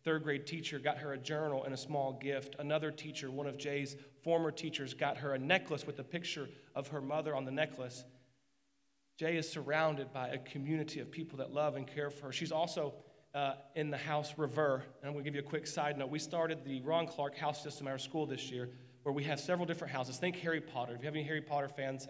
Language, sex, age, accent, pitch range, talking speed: English, male, 40-59, American, 140-165 Hz, 240 wpm